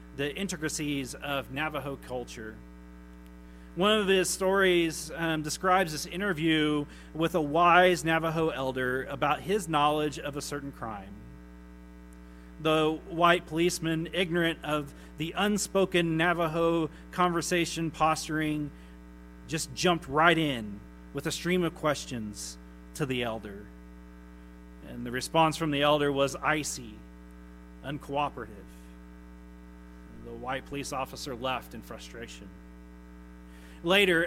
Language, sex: English, male